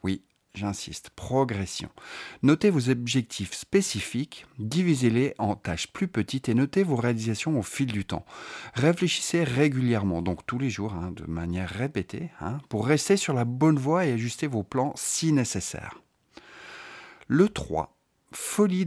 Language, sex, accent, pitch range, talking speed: French, male, French, 105-145 Hz, 145 wpm